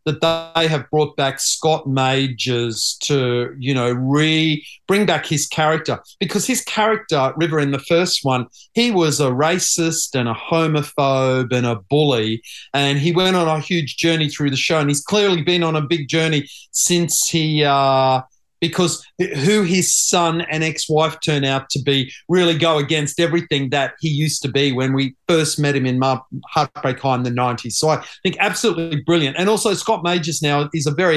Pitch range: 135-165 Hz